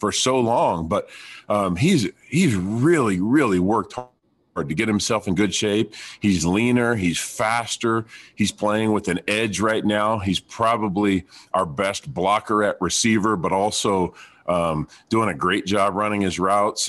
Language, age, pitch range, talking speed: English, 40-59, 90-110 Hz, 160 wpm